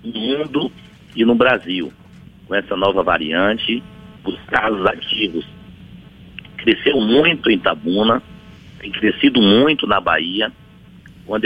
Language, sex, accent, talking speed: Portuguese, male, Brazilian, 115 wpm